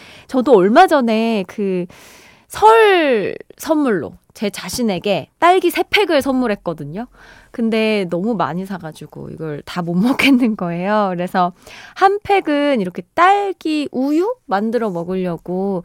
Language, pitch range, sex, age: Korean, 185-290 Hz, female, 20-39